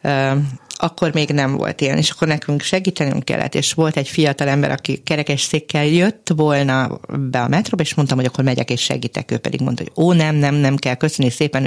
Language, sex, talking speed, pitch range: Hungarian, female, 210 wpm, 135-165 Hz